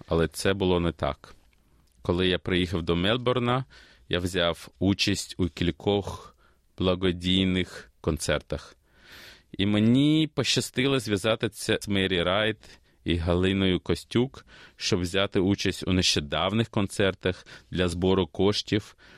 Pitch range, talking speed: 85-100 Hz, 115 wpm